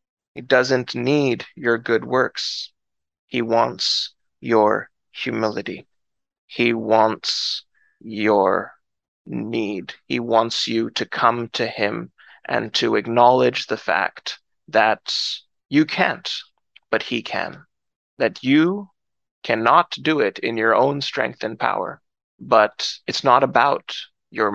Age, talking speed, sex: 20-39, 115 wpm, male